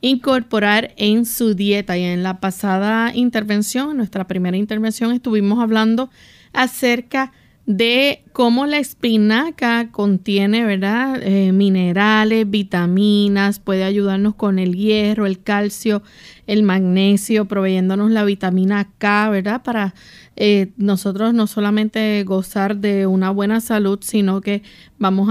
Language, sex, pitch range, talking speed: Spanish, female, 195-225 Hz, 120 wpm